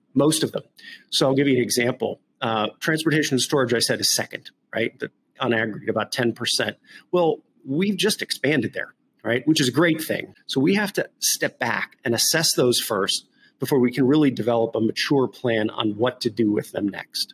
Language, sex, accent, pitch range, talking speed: English, male, American, 110-140 Hz, 200 wpm